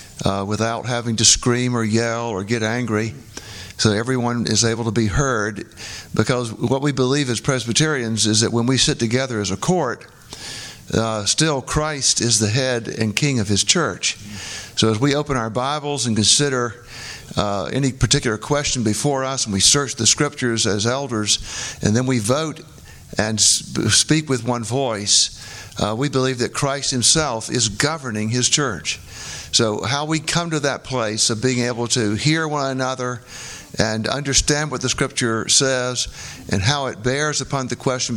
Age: 50-69